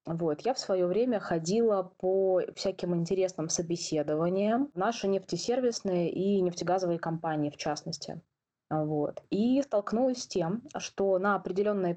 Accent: native